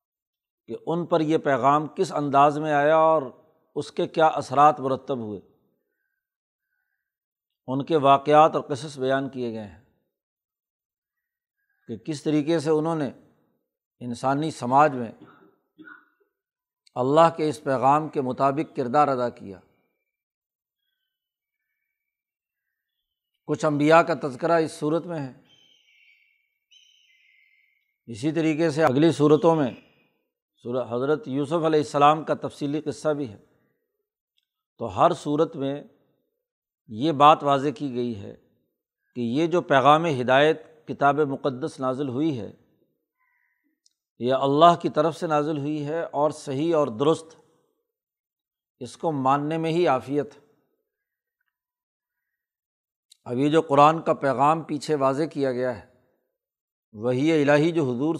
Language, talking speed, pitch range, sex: Urdu, 125 wpm, 140-175 Hz, male